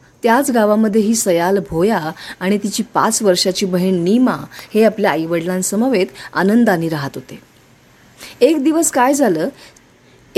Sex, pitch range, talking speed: female, 185-255 Hz, 115 wpm